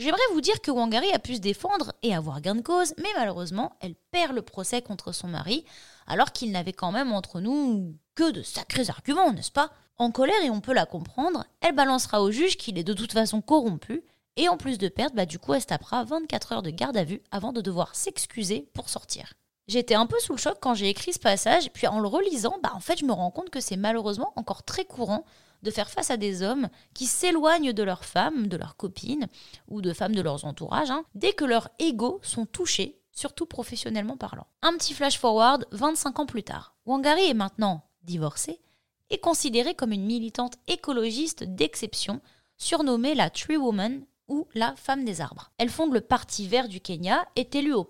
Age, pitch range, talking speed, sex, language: 20-39, 205-295 Hz, 225 wpm, female, French